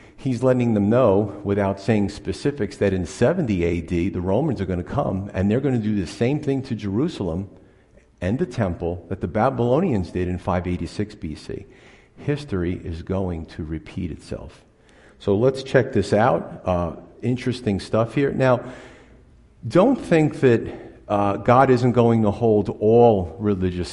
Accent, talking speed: American, 160 wpm